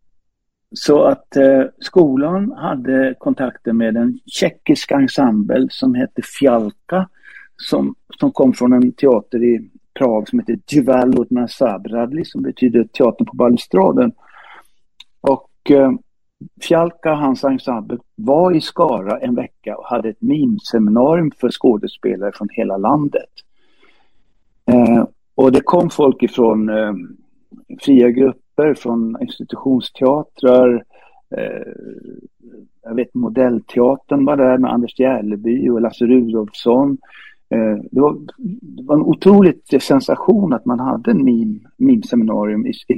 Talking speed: 125 wpm